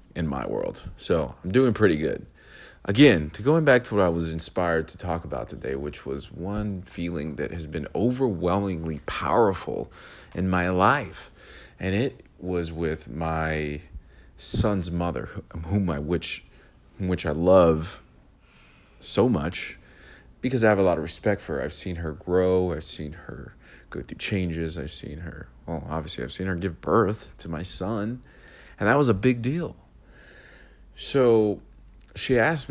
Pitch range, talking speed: 80-105 Hz, 165 wpm